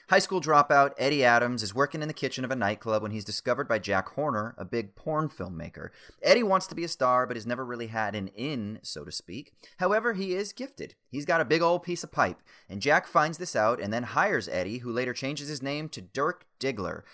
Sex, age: male, 30-49